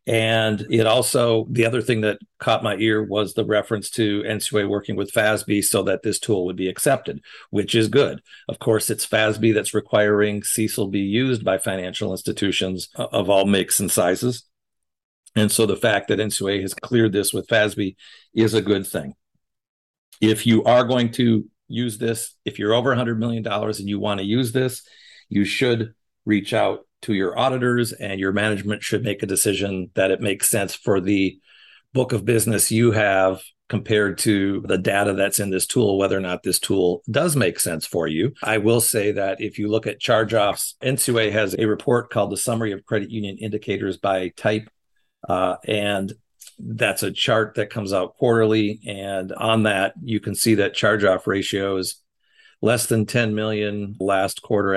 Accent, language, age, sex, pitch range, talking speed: American, English, 50-69, male, 100-115 Hz, 185 wpm